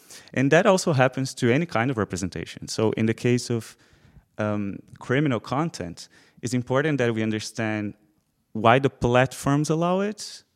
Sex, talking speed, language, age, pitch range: male, 155 wpm, English, 30-49, 105-135 Hz